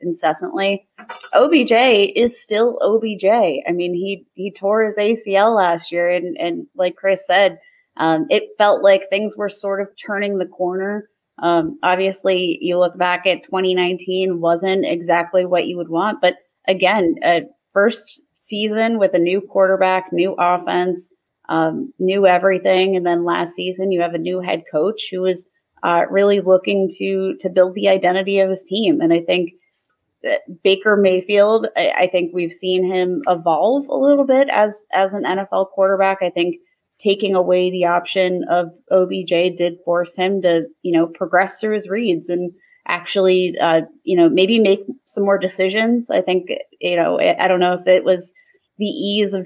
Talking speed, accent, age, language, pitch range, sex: 170 wpm, American, 20-39, English, 175-200 Hz, female